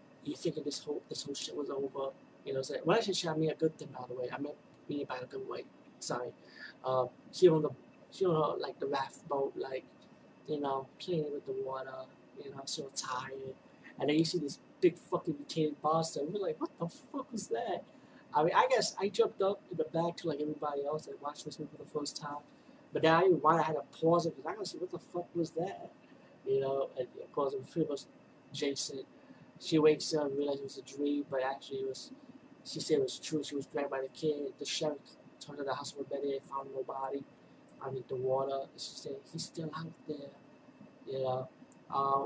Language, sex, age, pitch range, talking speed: English, male, 30-49, 135-175 Hz, 235 wpm